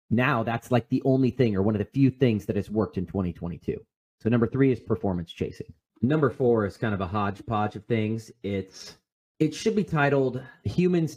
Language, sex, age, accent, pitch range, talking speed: English, male, 30-49, American, 100-135 Hz, 205 wpm